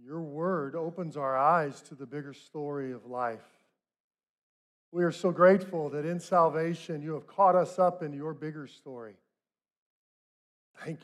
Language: English